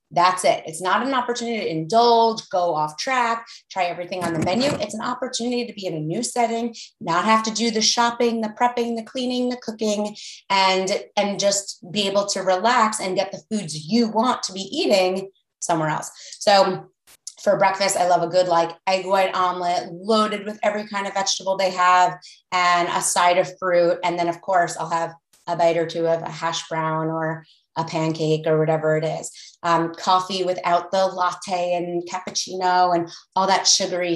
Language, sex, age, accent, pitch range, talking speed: English, female, 30-49, American, 175-205 Hz, 195 wpm